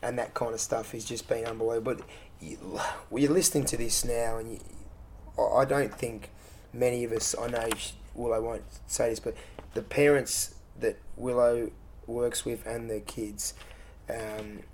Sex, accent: male, Australian